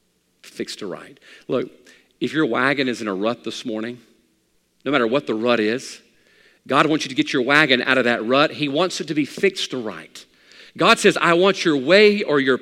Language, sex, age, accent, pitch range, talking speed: English, male, 40-59, American, 130-205 Hz, 210 wpm